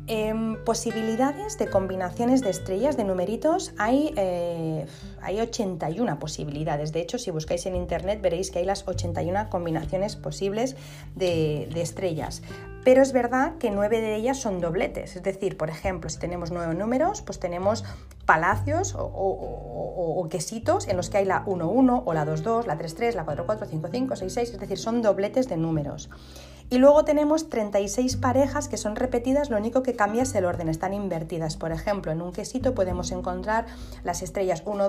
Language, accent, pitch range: Spanish, Spanish, 170-230 Hz